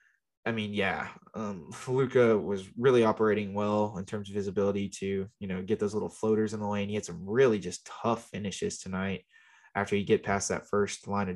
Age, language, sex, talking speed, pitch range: 20-39, English, male, 210 wpm, 100-110 Hz